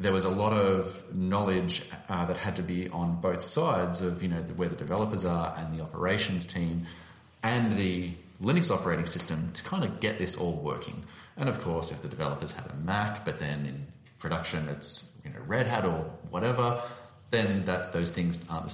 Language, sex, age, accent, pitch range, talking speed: English, male, 30-49, Australian, 85-110 Hz, 200 wpm